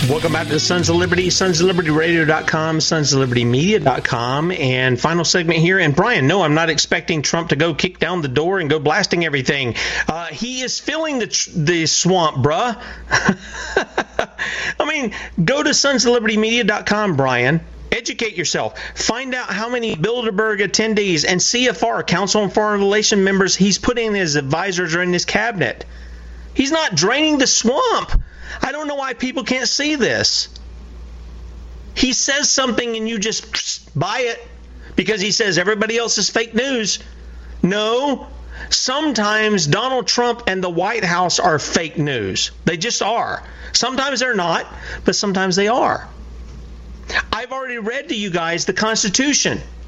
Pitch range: 155-235 Hz